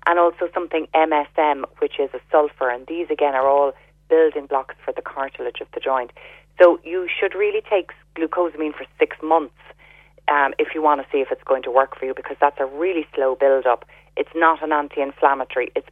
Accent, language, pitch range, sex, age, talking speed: Irish, English, 140-175 Hz, female, 30-49, 205 wpm